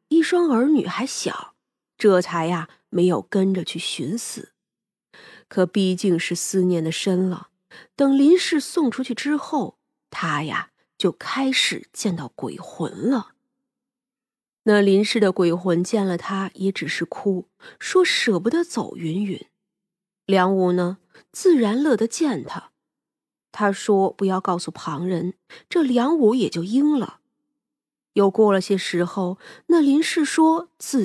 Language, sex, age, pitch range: Chinese, female, 30-49, 185-270 Hz